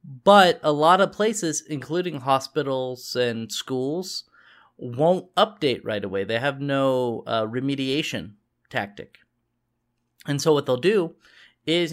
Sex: male